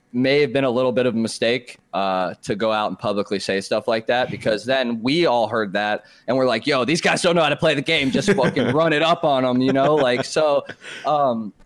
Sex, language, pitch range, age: male, English, 105-145 Hz, 20-39